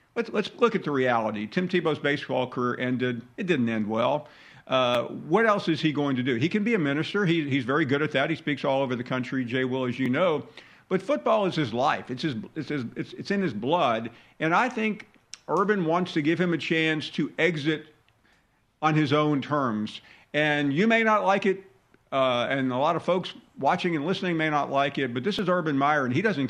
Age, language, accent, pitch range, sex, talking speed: 50-69, English, American, 130-185 Hz, male, 230 wpm